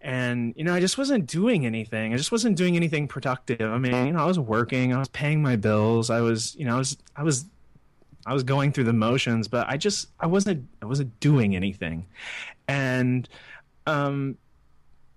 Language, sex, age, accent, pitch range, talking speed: English, male, 20-39, American, 115-150 Hz, 200 wpm